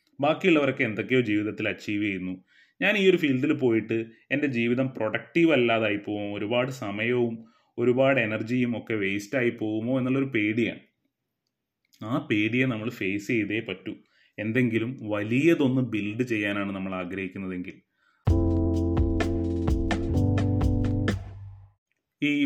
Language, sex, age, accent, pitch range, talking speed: Malayalam, male, 30-49, native, 105-135 Hz, 95 wpm